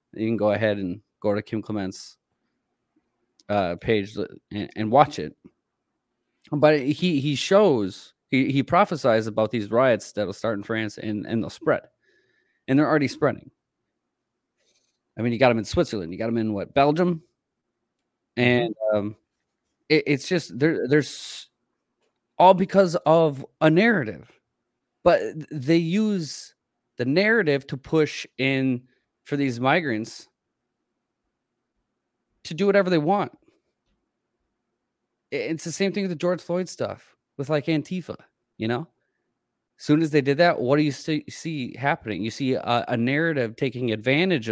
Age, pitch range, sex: 30-49, 115-155 Hz, male